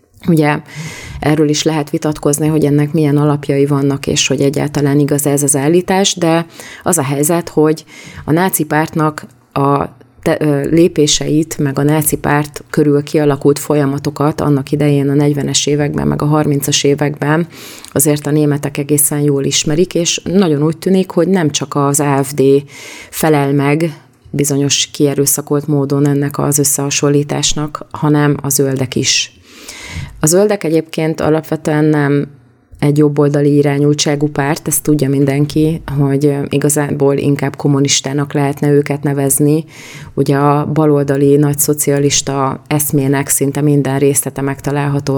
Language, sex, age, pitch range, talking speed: Hungarian, female, 30-49, 140-150 Hz, 130 wpm